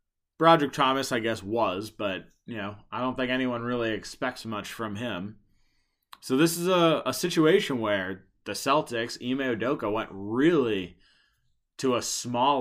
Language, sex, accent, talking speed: English, male, American, 155 wpm